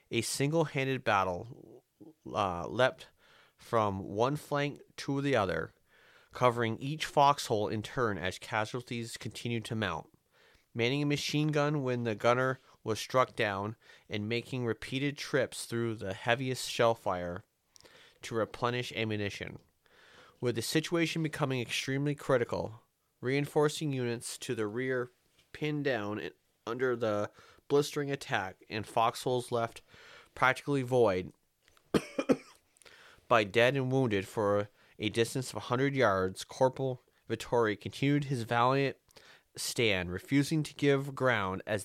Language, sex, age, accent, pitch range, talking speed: English, male, 30-49, American, 110-140 Hz, 125 wpm